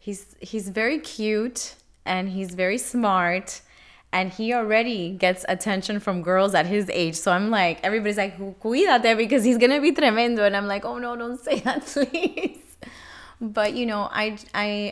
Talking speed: 175 wpm